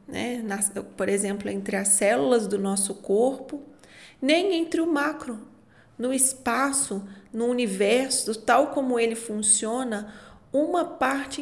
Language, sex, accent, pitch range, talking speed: Portuguese, female, Brazilian, 215-280 Hz, 115 wpm